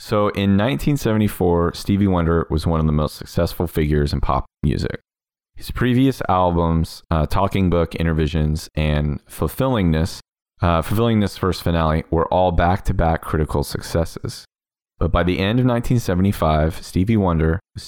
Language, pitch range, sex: English, 80-105 Hz, male